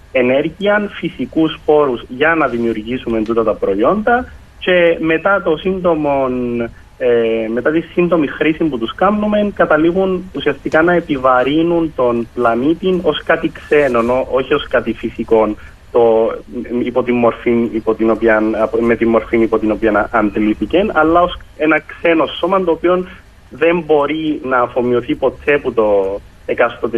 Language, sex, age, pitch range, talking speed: Greek, male, 30-49, 110-160 Hz, 130 wpm